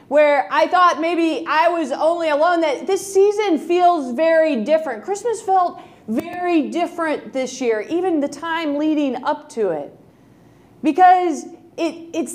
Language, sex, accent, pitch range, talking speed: English, female, American, 290-345 Hz, 145 wpm